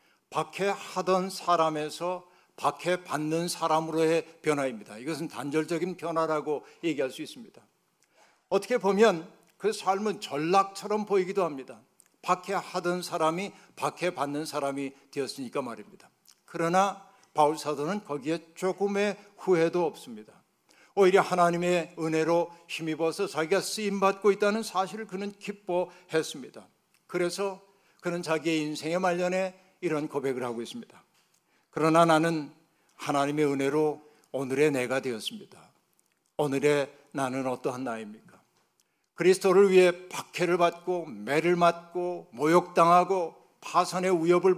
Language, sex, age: Korean, male, 60-79